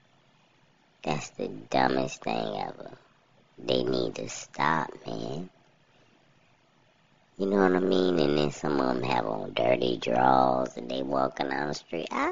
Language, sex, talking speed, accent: English, male, 145 wpm, American